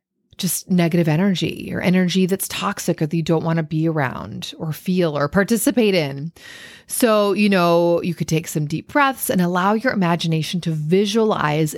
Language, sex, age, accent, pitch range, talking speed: English, female, 30-49, American, 175-240 Hz, 180 wpm